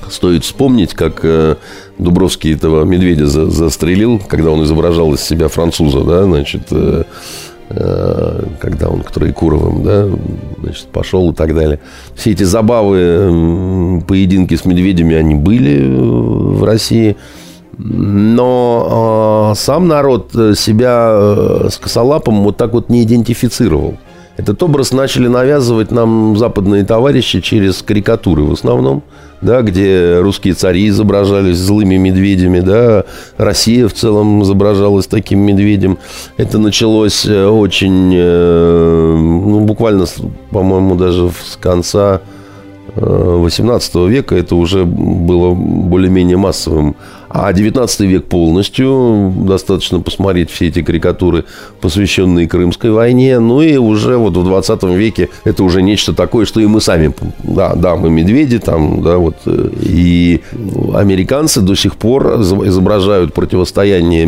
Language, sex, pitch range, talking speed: Russian, male, 85-110 Hz, 120 wpm